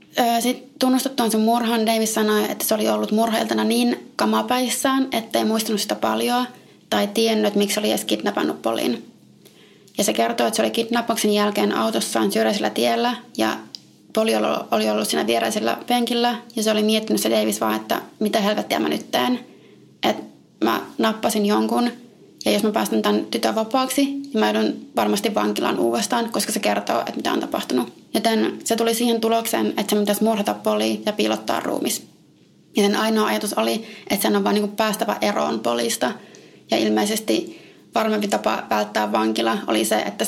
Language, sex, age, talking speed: Finnish, female, 20-39, 170 wpm